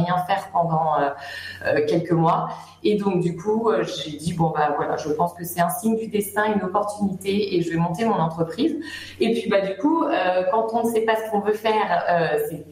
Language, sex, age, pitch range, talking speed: French, female, 30-49, 175-215 Hz, 220 wpm